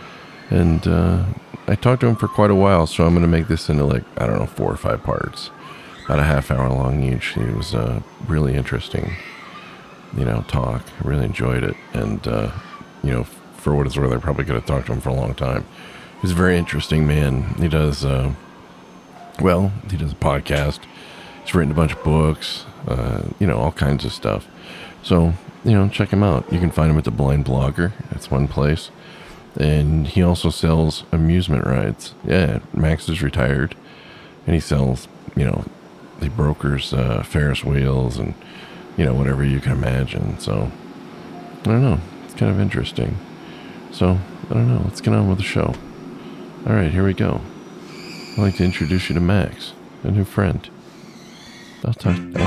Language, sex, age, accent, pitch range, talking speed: English, male, 40-59, American, 70-95 Hz, 190 wpm